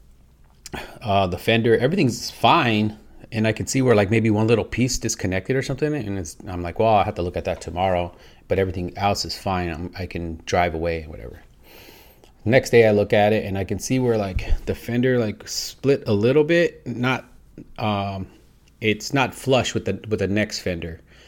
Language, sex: English, male